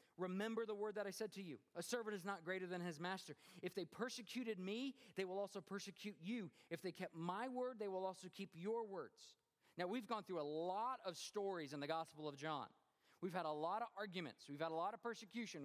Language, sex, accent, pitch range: English, male, American, 180-235 Hz